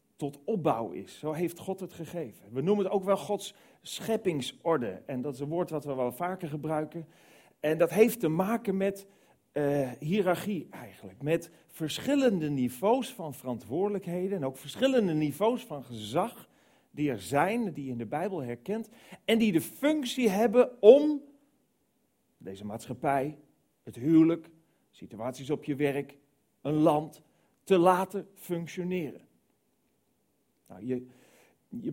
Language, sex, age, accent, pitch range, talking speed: Dutch, male, 40-59, Dutch, 130-185 Hz, 145 wpm